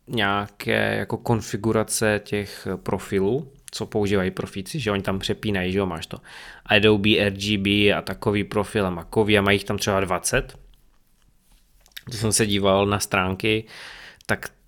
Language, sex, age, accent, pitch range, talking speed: Czech, male, 20-39, native, 100-120 Hz, 145 wpm